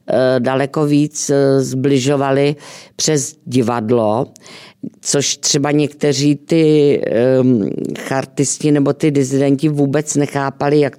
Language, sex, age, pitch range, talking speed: Czech, female, 50-69, 130-155 Hz, 85 wpm